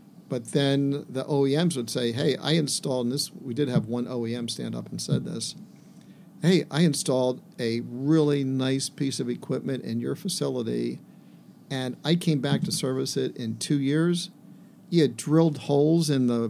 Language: English